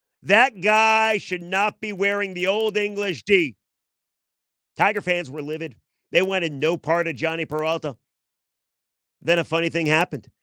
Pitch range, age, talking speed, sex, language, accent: 145-180 Hz, 40-59, 150 wpm, male, English, American